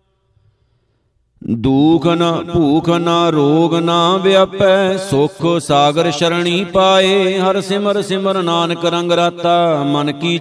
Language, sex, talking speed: Punjabi, male, 110 wpm